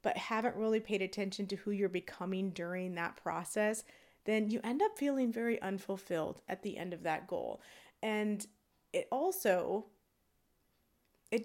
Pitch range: 185-230 Hz